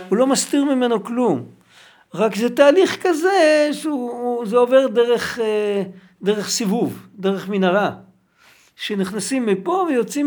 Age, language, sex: 60-79, Hebrew, male